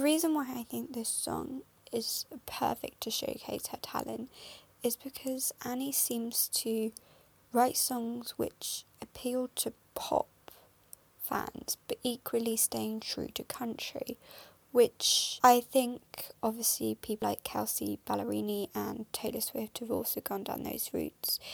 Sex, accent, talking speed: female, British, 135 wpm